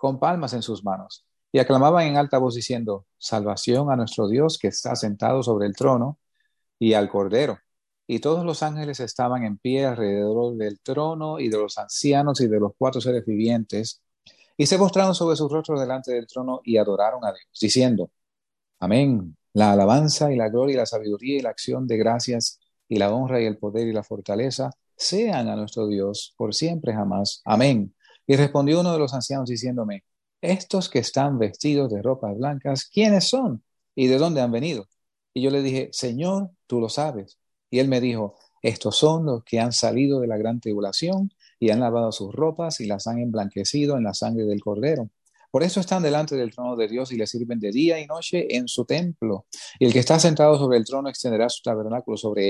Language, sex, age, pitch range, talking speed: English, male, 40-59, 110-145 Hz, 200 wpm